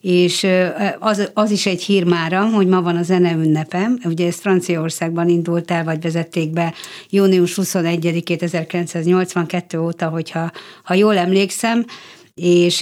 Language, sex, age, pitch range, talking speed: Hungarian, female, 60-79, 170-190 Hz, 135 wpm